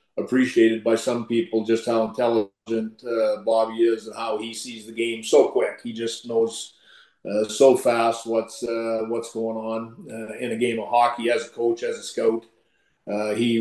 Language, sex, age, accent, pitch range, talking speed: English, male, 40-59, American, 115-130 Hz, 190 wpm